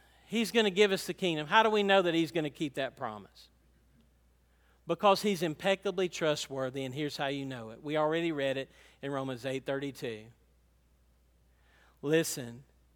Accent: American